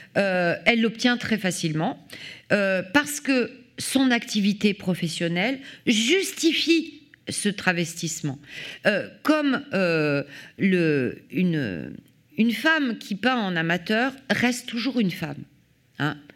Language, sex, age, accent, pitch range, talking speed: French, female, 40-59, French, 170-240 Hz, 110 wpm